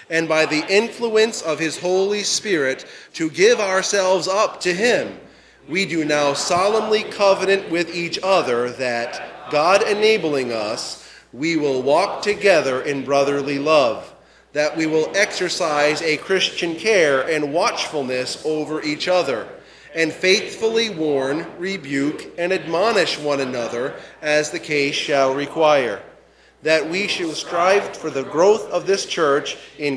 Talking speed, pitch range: 140 wpm, 145-195 Hz